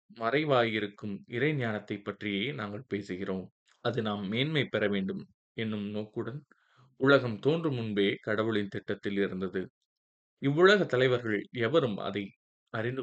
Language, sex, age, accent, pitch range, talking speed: Tamil, male, 20-39, native, 100-120 Hz, 105 wpm